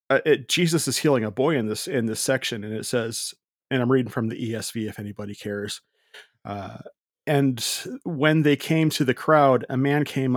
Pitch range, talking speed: 115-140 Hz, 195 wpm